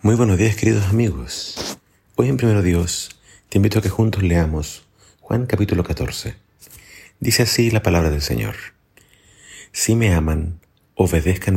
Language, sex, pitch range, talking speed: Spanish, male, 80-105 Hz, 145 wpm